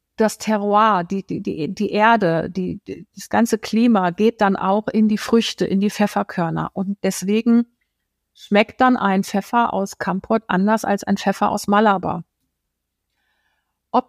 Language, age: German, 50-69